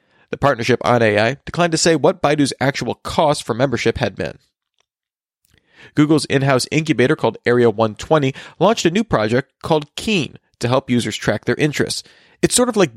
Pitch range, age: 120-155 Hz, 40-59